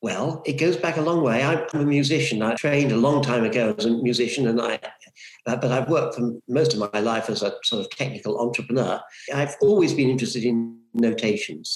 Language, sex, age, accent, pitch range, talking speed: English, male, 60-79, British, 120-140 Hz, 210 wpm